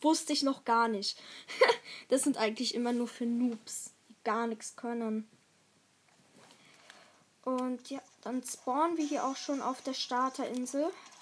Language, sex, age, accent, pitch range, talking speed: German, female, 10-29, German, 240-275 Hz, 145 wpm